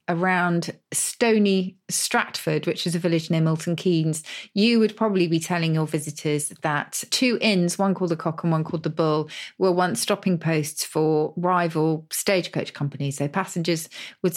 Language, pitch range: English, 155-180 Hz